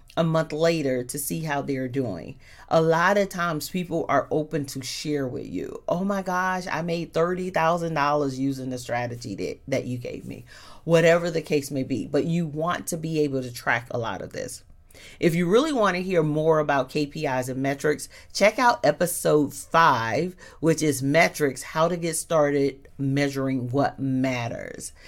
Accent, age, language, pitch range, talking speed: American, 40-59, English, 130-170 Hz, 175 wpm